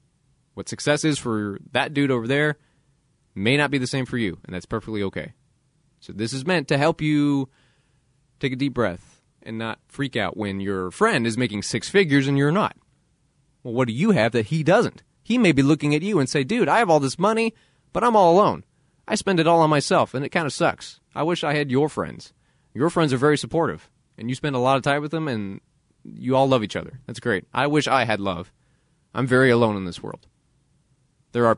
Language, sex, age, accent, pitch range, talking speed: English, male, 20-39, American, 115-145 Hz, 230 wpm